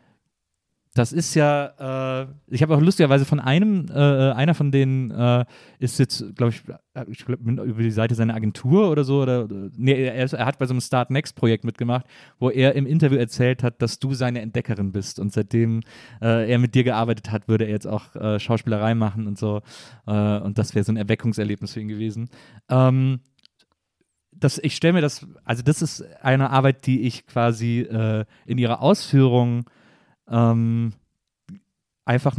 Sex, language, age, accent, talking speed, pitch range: male, German, 30-49, German, 170 wpm, 115-140 Hz